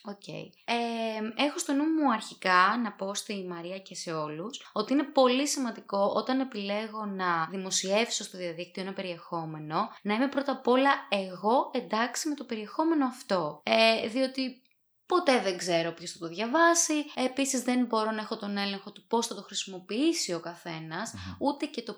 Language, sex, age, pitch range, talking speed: Greek, female, 20-39, 190-270 Hz, 165 wpm